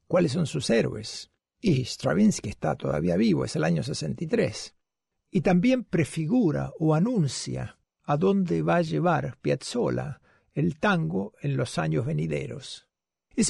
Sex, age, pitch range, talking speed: male, 60-79, 125-190 Hz, 140 wpm